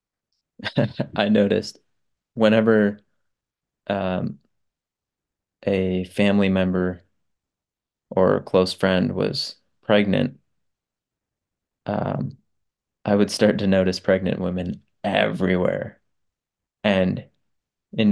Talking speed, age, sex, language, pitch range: 80 wpm, 20-39, male, English, 95-110 Hz